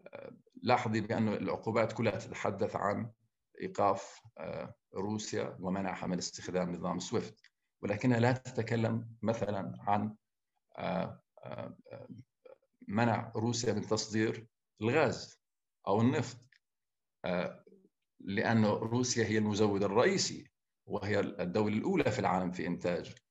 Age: 50-69